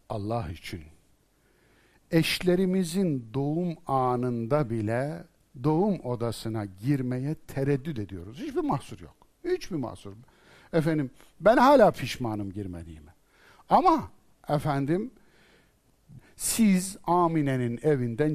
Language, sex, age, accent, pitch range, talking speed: Turkish, male, 60-79, native, 115-165 Hz, 85 wpm